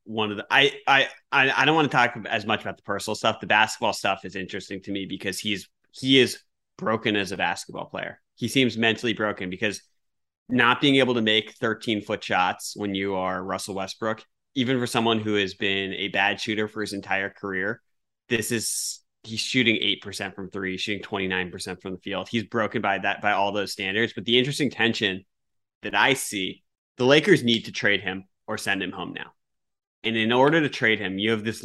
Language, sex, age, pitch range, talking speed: English, male, 30-49, 100-115 Hz, 210 wpm